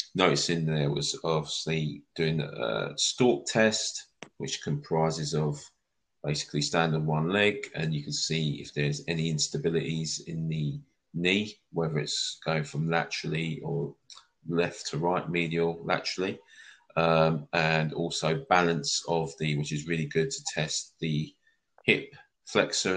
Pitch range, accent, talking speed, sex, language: 75-85 Hz, British, 140 wpm, male, English